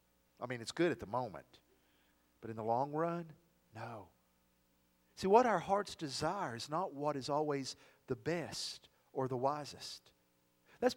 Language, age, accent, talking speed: English, 50-69, American, 160 wpm